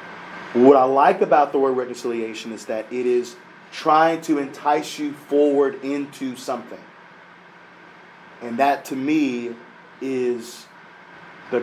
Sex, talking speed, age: male, 125 wpm, 40-59